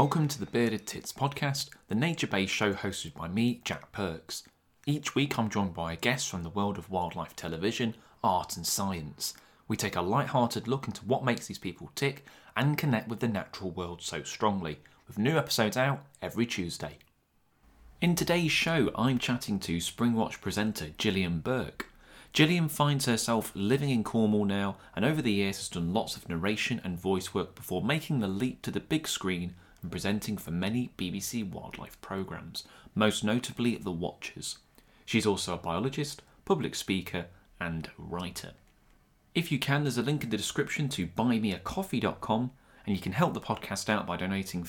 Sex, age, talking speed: male, 30-49, 175 wpm